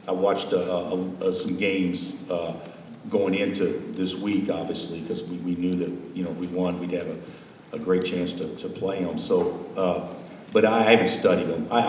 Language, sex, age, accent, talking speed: English, male, 50-69, American, 200 wpm